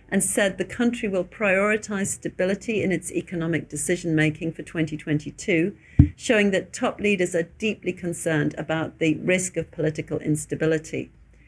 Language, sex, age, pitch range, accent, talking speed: English, female, 50-69, 160-195 Hz, British, 135 wpm